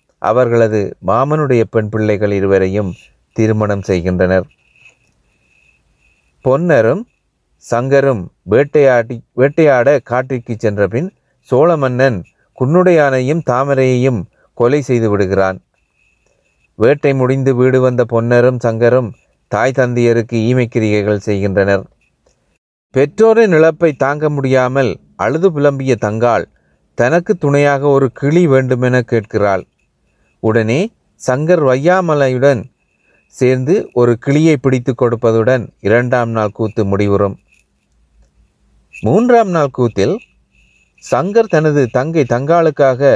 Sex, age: male, 30-49